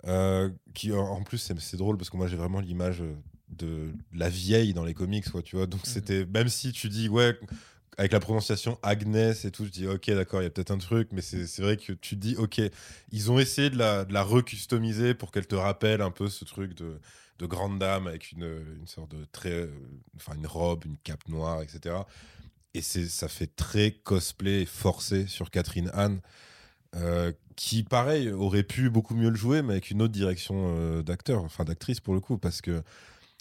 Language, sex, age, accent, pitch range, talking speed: French, male, 20-39, French, 90-110 Hz, 220 wpm